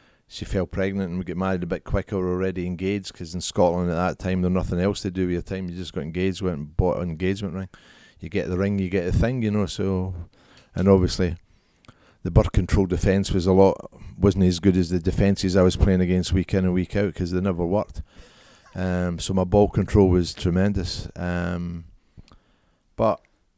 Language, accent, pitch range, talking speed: English, British, 90-105 Hz, 215 wpm